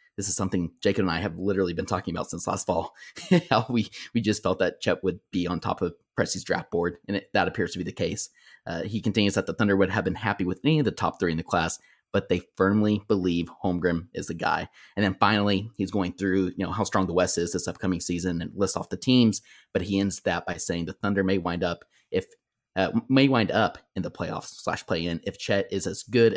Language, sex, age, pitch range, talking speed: English, male, 30-49, 90-105 Hz, 255 wpm